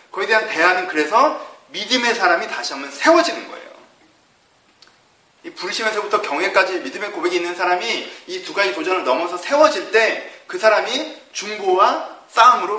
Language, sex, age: Korean, male, 30-49